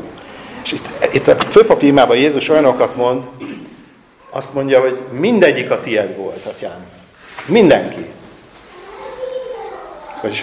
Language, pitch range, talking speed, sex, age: Hungarian, 115-160 Hz, 110 wpm, male, 50-69